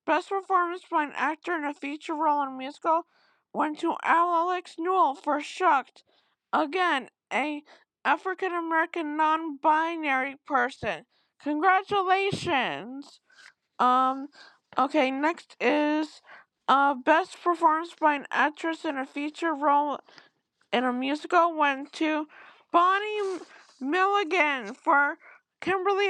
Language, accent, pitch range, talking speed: English, American, 290-355 Hz, 110 wpm